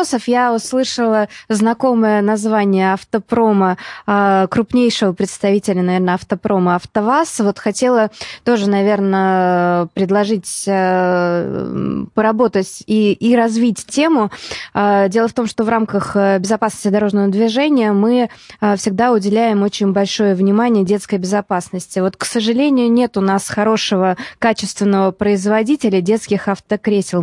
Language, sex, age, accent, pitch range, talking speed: Russian, female, 20-39, native, 185-220 Hz, 105 wpm